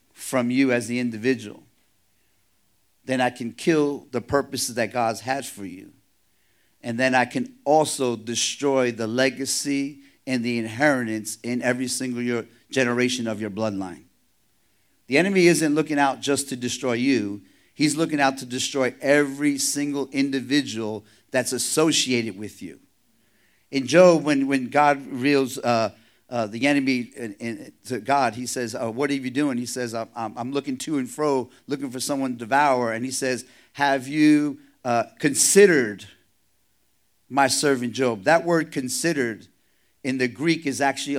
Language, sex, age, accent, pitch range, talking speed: English, male, 50-69, American, 120-145 Hz, 155 wpm